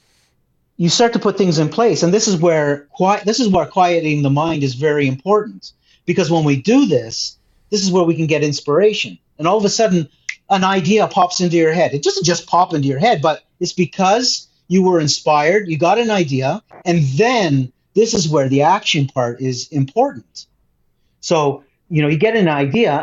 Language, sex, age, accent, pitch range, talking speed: English, male, 40-59, American, 145-195 Hz, 205 wpm